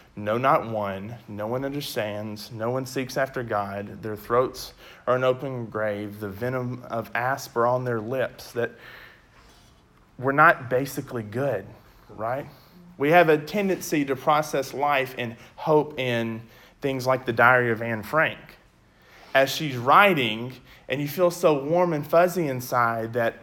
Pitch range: 115-155 Hz